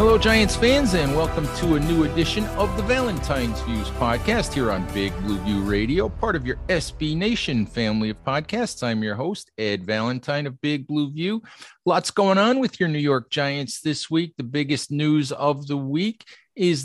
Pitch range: 125-160 Hz